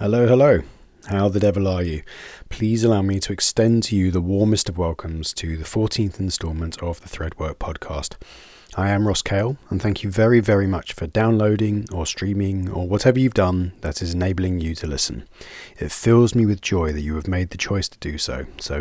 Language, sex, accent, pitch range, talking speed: English, male, British, 85-105 Hz, 205 wpm